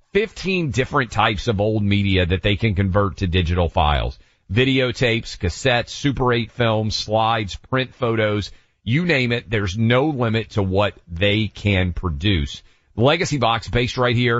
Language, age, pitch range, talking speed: English, 40-59, 95-120 Hz, 155 wpm